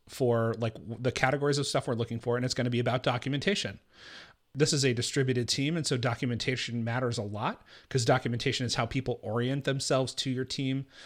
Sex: male